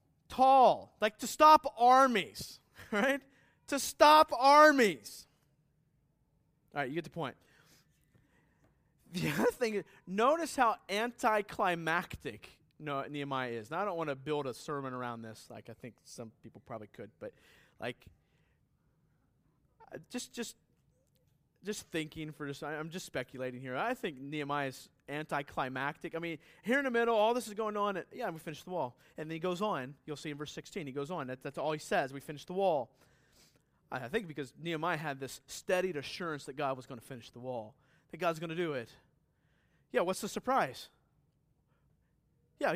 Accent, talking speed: American, 175 wpm